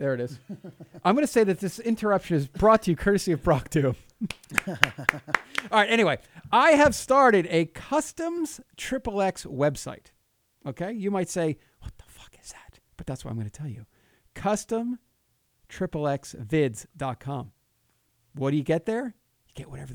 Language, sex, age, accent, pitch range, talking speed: English, male, 40-59, American, 130-200 Hz, 170 wpm